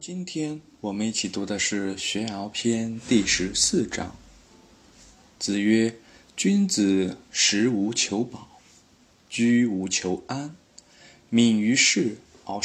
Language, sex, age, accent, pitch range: Chinese, male, 20-39, native, 100-120 Hz